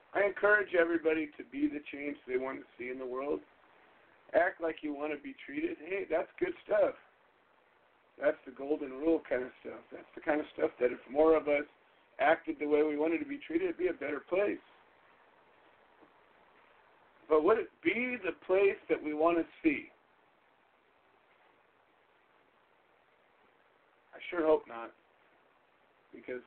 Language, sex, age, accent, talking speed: English, male, 50-69, American, 165 wpm